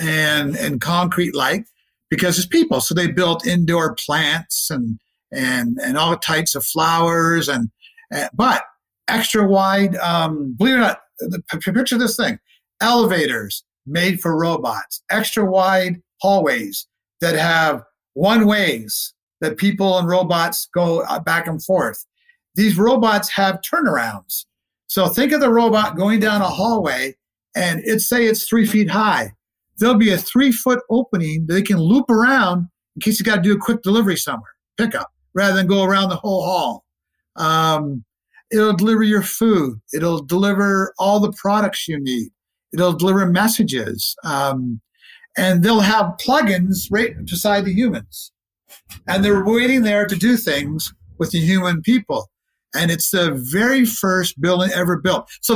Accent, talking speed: American, 155 wpm